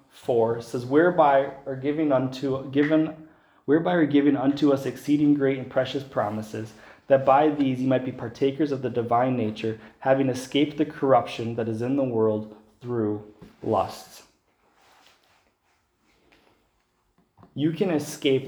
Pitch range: 110-145 Hz